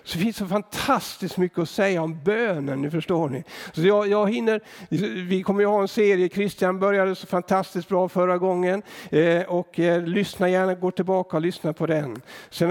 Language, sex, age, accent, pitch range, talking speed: Swedish, male, 60-79, native, 145-185 Hz, 190 wpm